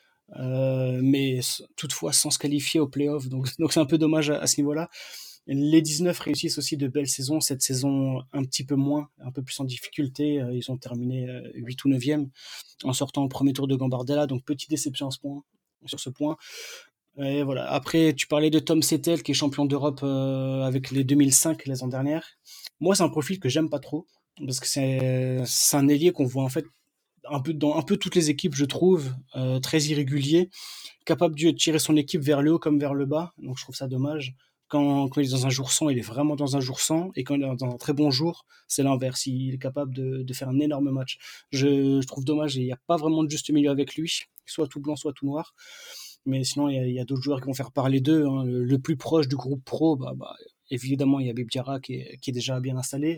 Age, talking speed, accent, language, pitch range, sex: 20-39, 245 wpm, French, French, 130-155 Hz, male